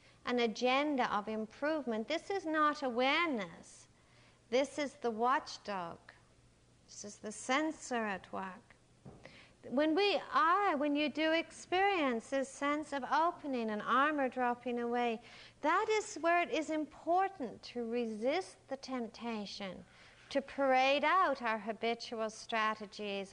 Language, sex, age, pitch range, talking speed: English, female, 60-79, 220-285 Hz, 125 wpm